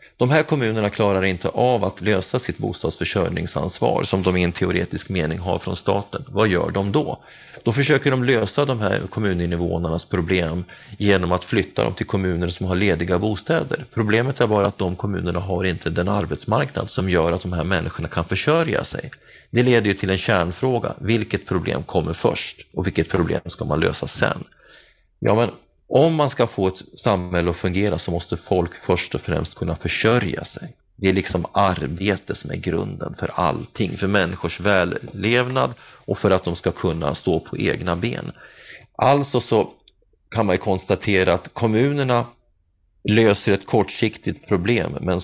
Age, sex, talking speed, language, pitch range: 30-49, male, 175 wpm, Swedish, 85-110 Hz